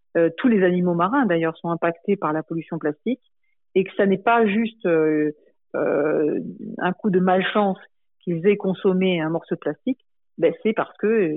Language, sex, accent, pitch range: French, female, French, 170-210 Hz